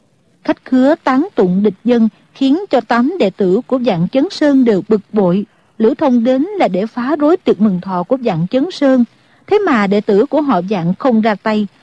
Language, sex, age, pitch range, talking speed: Vietnamese, female, 50-69, 205-275 Hz, 215 wpm